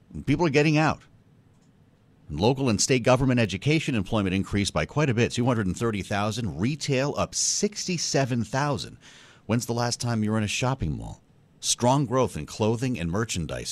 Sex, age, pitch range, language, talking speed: male, 40-59, 100-130 Hz, English, 155 wpm